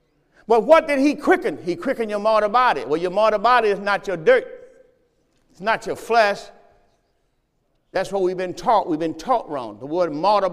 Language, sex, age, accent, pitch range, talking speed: English, male, 50-69, American, 175-270 Hz, 195 wpm